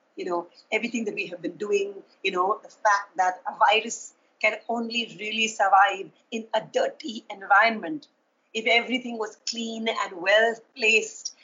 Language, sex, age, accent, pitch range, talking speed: Hindi, female, 30-49, native, 210-285 Hz, 155 wpm